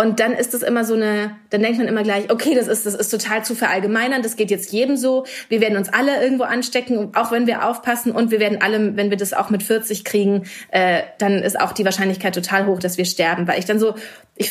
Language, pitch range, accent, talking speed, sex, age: German, 200-235 Hz, German, 255 wpm, female, 20-39